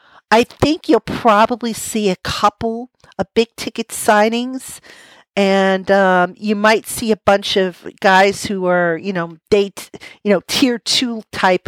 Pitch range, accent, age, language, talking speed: 180-215 Hz, American, 50-69, English, 155 wpm